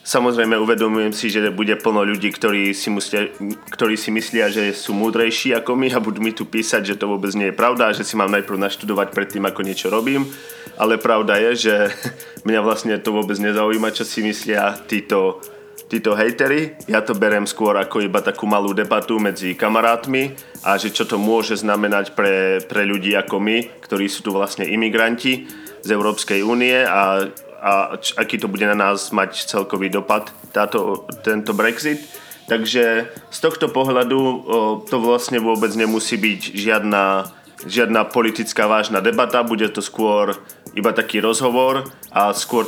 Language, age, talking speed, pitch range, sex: Slovak, 30-49, 170 wpm, 100-115 Hz, male